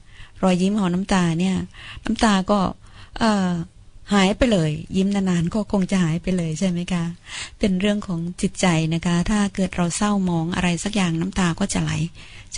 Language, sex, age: Thai, female, 20-39